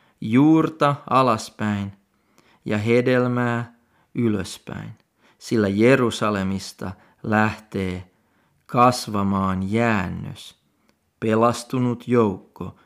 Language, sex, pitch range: Finnish, male, 105-130 Hz